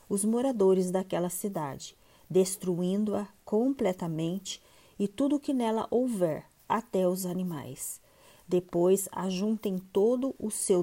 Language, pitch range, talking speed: Portuguese, 180-215 Hz, 110 wpm